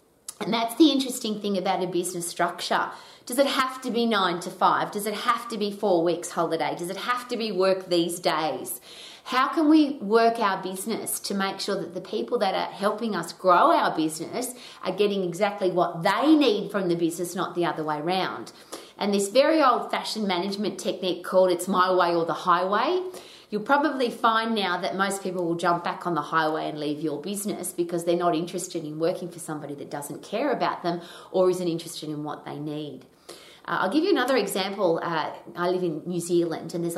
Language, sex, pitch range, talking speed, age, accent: English, female, 170-215 Hz, 210 wpm, 30-49, Australian